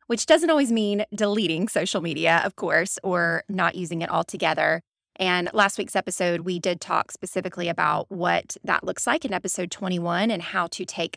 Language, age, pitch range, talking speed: English, 20-39, 175-215 Hz, 185 wpm